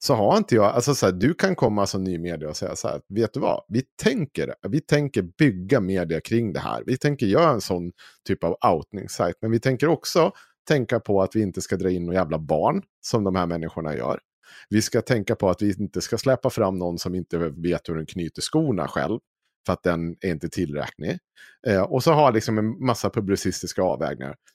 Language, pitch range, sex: Swedish, 90-130 Hz, male